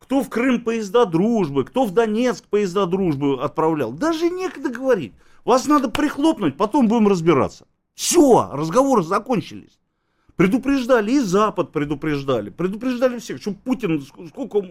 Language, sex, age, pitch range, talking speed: Russian, male, 50-69, 145-210 Hz, 130 wpm